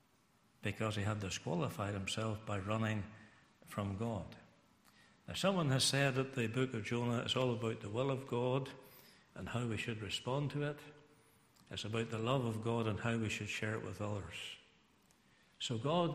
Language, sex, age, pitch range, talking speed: English, male, 60-79, 110-135 Hz, 180 wpm